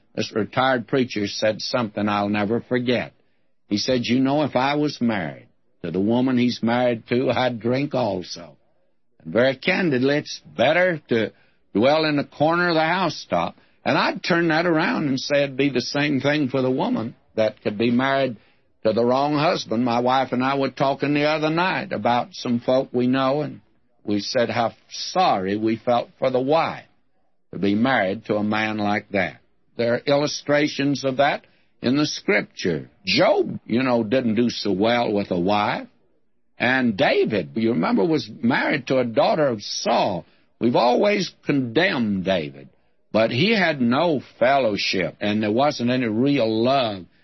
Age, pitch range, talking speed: 60-79, 105-140 Hz, 175 wpm